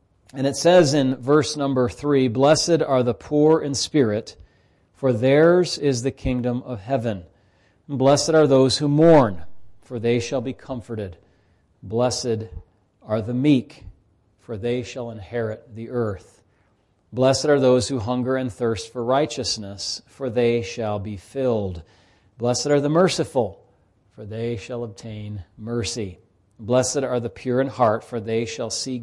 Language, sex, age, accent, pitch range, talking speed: English, male, 40-59, American, 110-135 Hz, 150 wpm